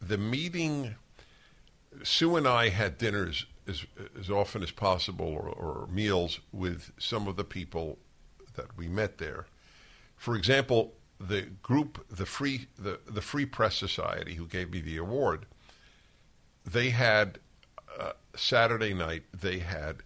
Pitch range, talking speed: 90-115 Hz, 140 wpm